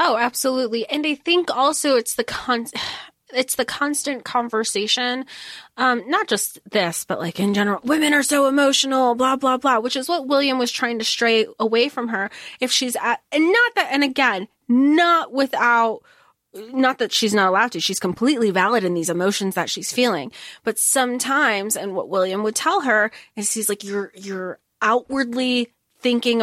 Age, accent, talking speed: 20-39, American, 180 wpm